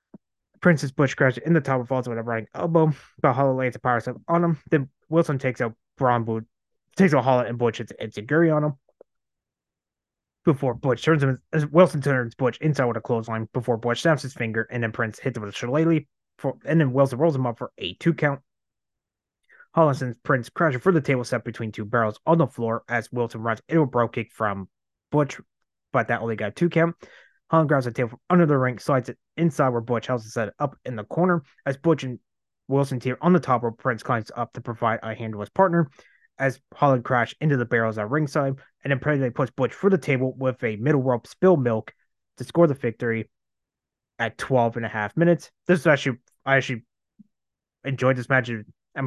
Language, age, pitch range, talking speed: English, 20-39, 115-150 Hz, 220 wpm